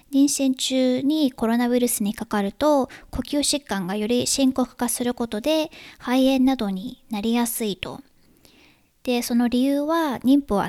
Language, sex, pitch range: Japanese, male, 210-265 Hz